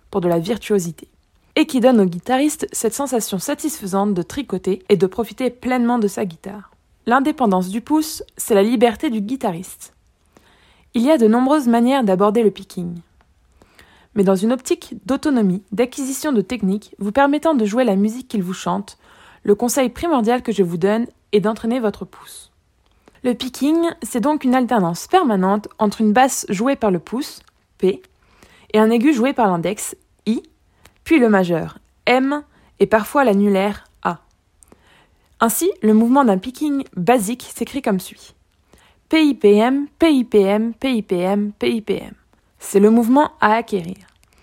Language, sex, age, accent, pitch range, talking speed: French, female, 20-39, French, 195-260 Hz, 155 wpm